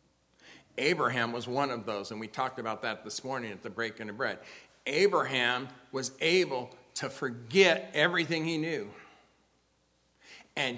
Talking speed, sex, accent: 145 wpm, male, American